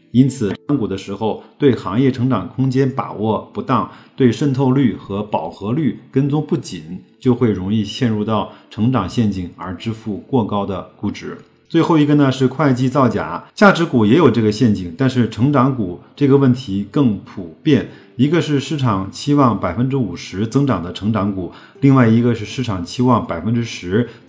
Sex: male